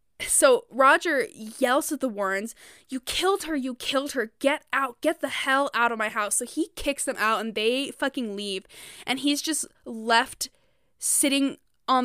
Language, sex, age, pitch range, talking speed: English, female, 10-29, 215-270 Hz, 180 wpm